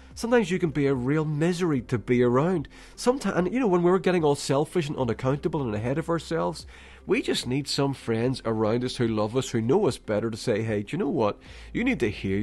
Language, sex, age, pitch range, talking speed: English, male, 40-59, 105-165 Hz, 240 wpm